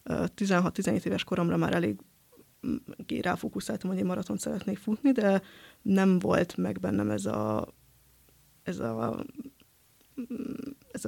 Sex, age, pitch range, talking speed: female, 20-39, 170-215 Hz, 115 wpm